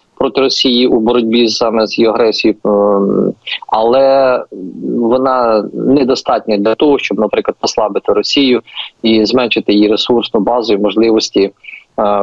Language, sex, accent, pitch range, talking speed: Ukrainian, male, native, 100-140 Hz, 120 wpm